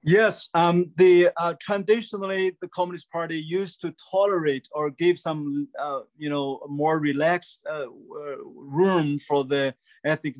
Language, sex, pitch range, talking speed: English, male, 140-170 Hz, 140 wpm